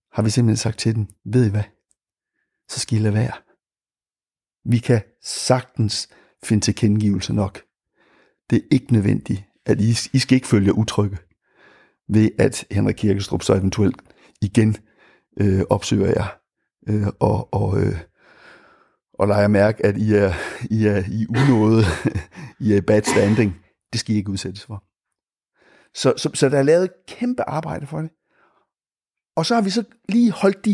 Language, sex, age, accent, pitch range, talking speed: Danish, male, 60-79, native, 105-130 Hz, 165 wpm